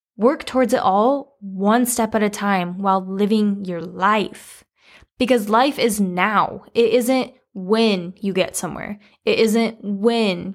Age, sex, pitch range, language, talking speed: 10-29, female, 205-255 Hz, English, 150 wpm